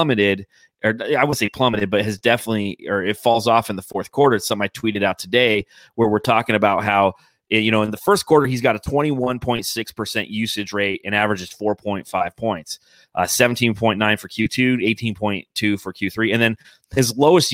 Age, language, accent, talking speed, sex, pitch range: 30-49, English, American, 190 wpm, male, 105-130 Hz